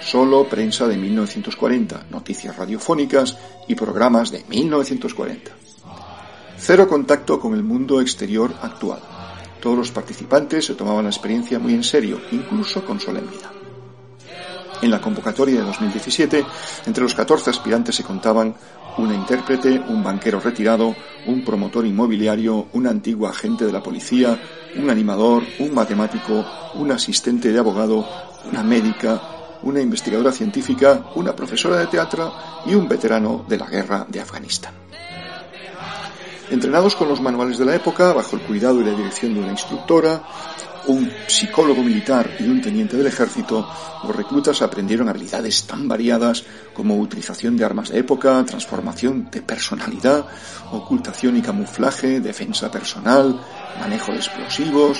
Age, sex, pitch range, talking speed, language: 40-59, male, 120-195 Hz, 140 wpm, Spanish